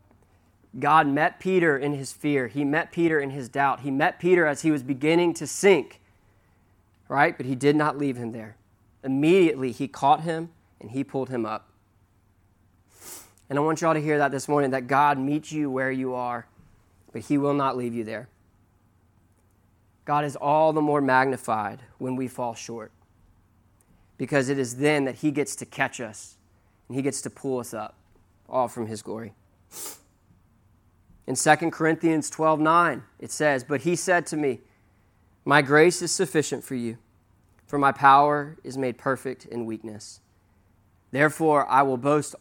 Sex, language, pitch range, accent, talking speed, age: male, English, 100-145 Hz, American, 175 wpm, 20-39